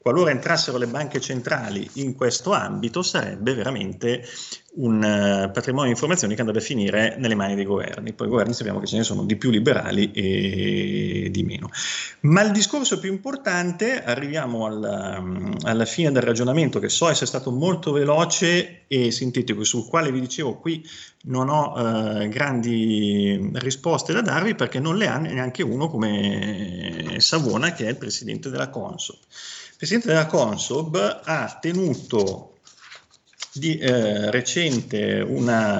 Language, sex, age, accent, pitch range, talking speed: Italian, male, 30-49, native, 115-155 Hz, 155 wpm